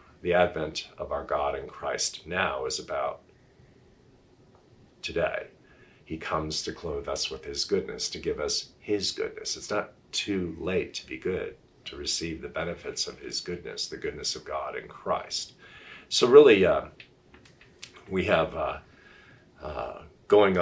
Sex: male